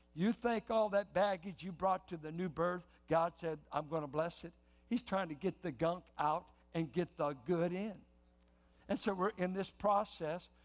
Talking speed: 205 wpm